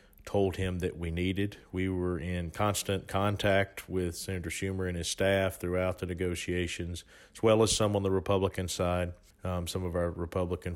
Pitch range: 90-100 Hz